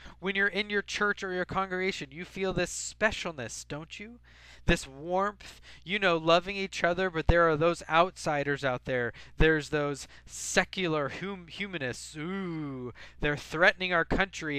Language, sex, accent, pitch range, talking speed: English, male, American, 135-190 Hz, 150 wpm